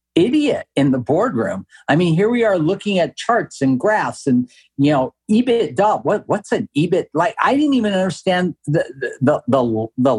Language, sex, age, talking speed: English, male, 50-69, 190 wpm